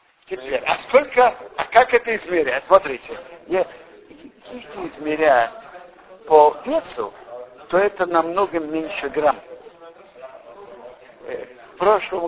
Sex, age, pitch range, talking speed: male, 60-79, 150-210 Hz, 95 wpm